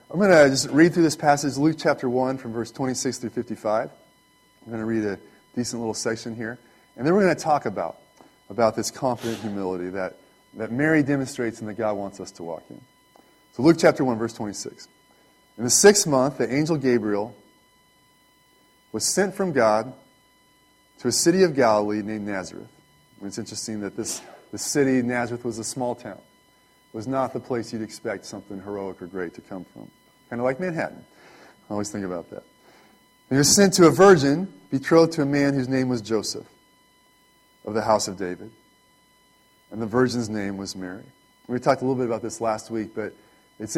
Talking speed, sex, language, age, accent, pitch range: 195 wpm, male, English, 30-49, American, 110-145 Hz